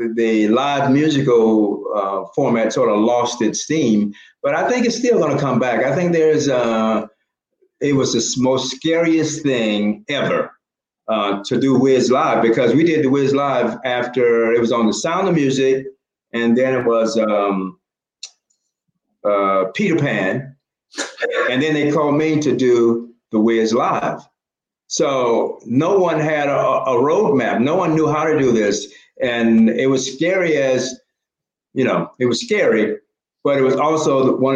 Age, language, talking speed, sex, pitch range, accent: 50-69, English, 170 wpm, male, 115-150 Hz, American